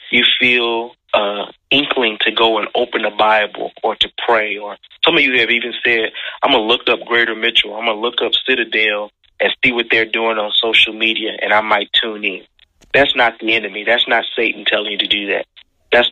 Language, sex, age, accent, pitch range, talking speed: English, male, 30-49, American, 105-120 Hz, 220 wpm